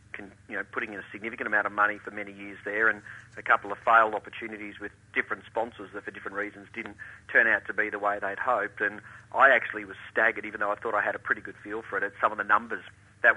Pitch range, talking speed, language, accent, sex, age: 100-115 Hz, 265 wpm, English, Australian, male, 40-59